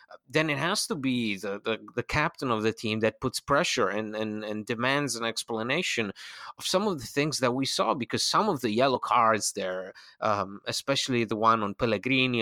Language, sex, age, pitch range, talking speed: English, male, 30-49, 110-140 Hz, 205 wpm